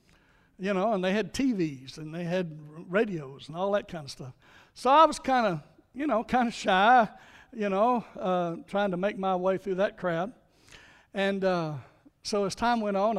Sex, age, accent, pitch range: male, 60-79, American, 175-220 Hz